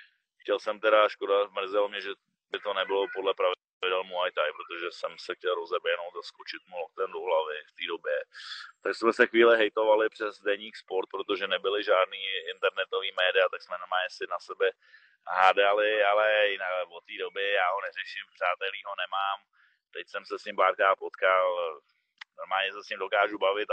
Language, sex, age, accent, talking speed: Czech, male, 20-39, native, 180 wpm